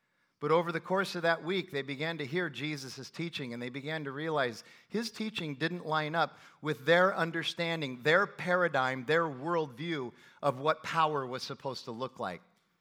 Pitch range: 145-185 Hz